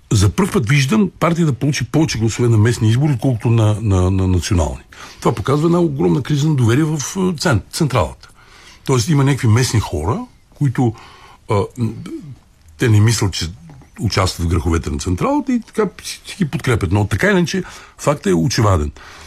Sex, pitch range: male, 90-135 Hz